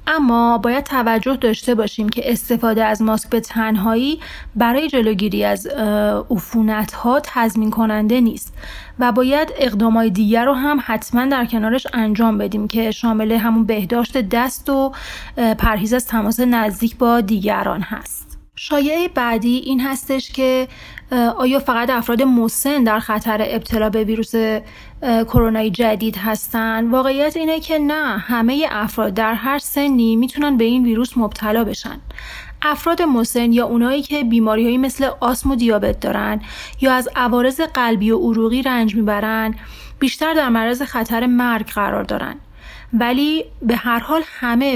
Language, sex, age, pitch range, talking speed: Persian, female, 30-49, 225-260 Hz, 140 wpm